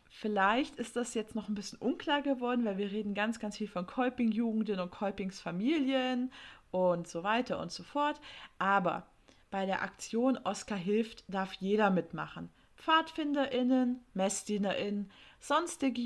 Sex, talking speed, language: female, 140 wpm, German